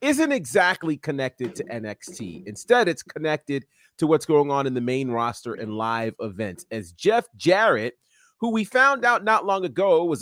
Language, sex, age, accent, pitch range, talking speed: English, male, 30-49, American, 125-165 Hz, 175 wpm